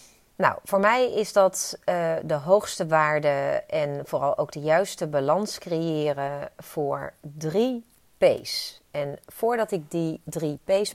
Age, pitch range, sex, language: 30-49, 145-185 Hz, female, Dutch